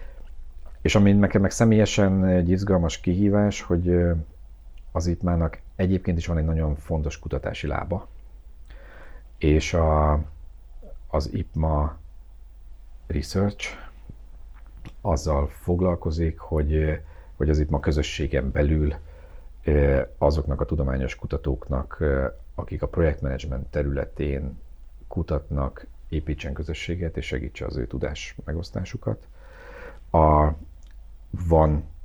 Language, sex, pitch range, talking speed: Hungarian, male, 70-80 Hz, 95 wpm